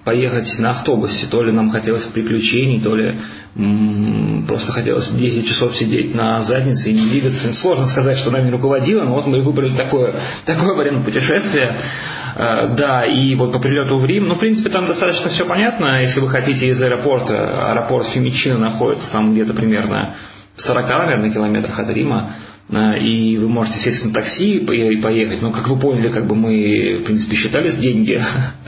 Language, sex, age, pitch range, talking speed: Russian, male, 30-49, 110-130 Hz, 180 wpm